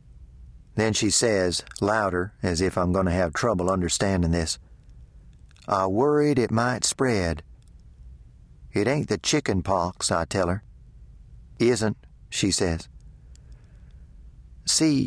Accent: American